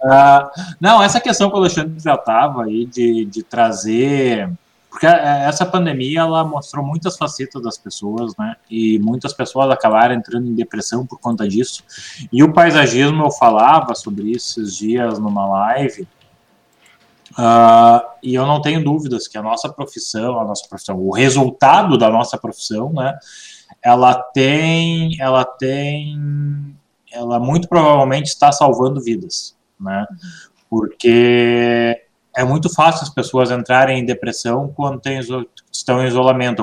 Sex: male